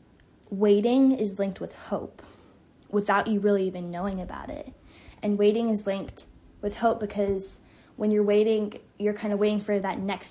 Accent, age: American, 10-29